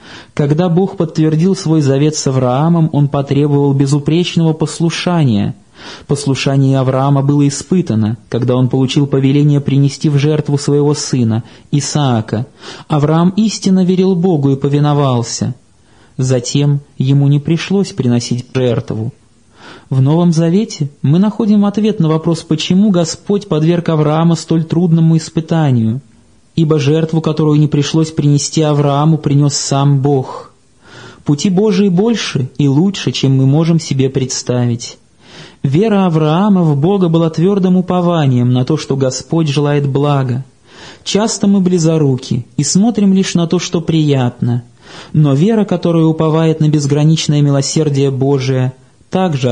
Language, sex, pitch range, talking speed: Russian, male, 135-170 Hz, 125 wpm